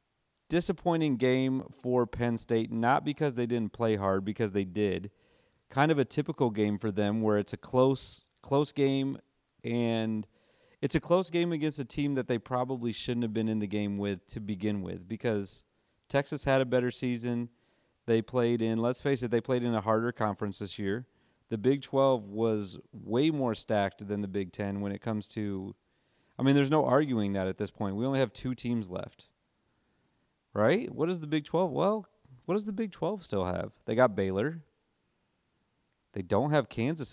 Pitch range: 105-135 Hz